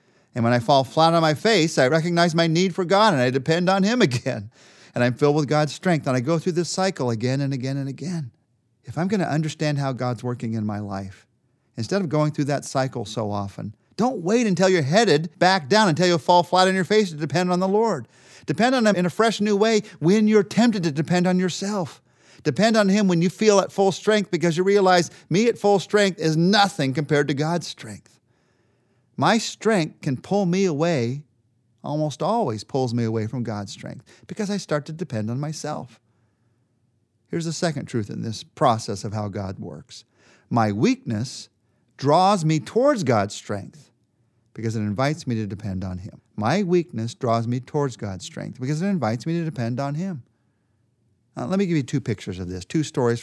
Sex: male